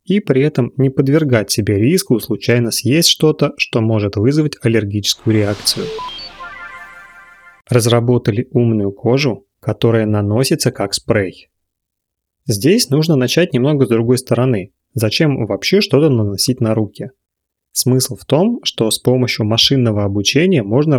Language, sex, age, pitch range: Russian, male, 30-49, 110-140 Hz